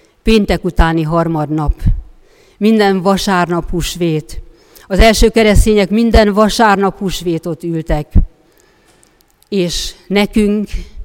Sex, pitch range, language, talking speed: female, 165-205 Hz, Hungarian, 80 wpm